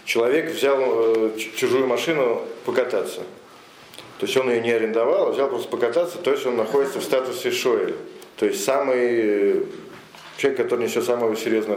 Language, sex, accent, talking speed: Russian, male, native, 155 wpm